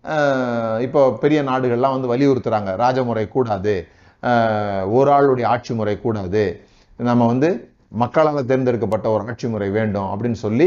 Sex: male